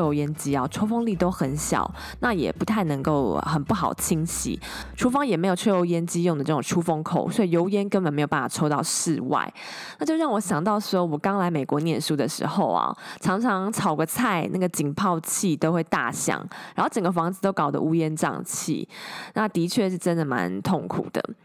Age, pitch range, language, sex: 20-39, 155-200 Hz, Chinese, female